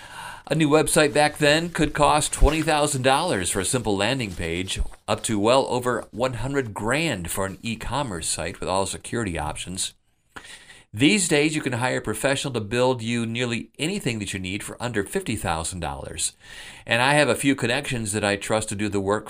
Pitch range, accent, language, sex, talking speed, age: 100-145 Hz, American, English, male, 180 wpm, 50-69